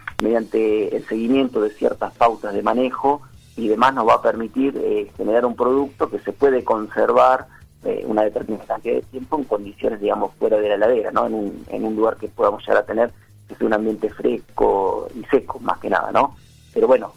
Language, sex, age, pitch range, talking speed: Spanish, male, 40-59, 105-155 Hz, 205 wpm